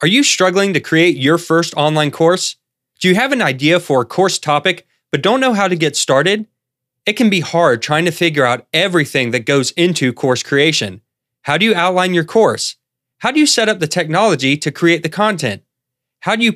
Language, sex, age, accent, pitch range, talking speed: English, male, 30-49, American, 135-185 Hz, 215 wpm